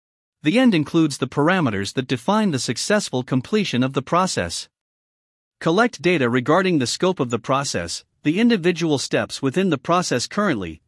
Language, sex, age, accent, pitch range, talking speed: English, male, 50-69, American, 125-180 Hz, 155 wpm